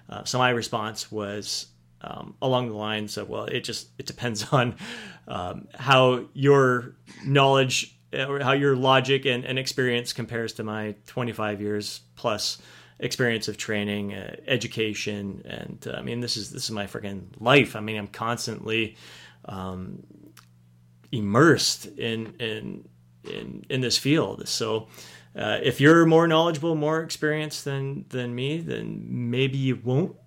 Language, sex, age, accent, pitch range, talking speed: English, male, 30-49, American, 110-140 Hz, 150 wpm